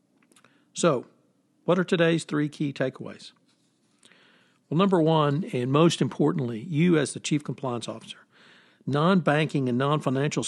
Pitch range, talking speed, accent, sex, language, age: 130-165 Hz, 125 wpm, American, male, English, 60-79